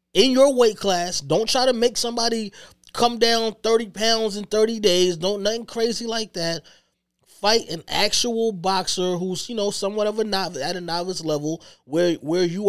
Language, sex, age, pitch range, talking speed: English, male, 20-39, 145-185 Hz, 185 wpm